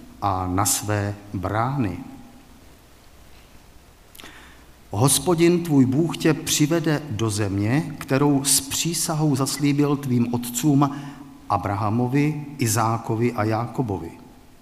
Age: 50-69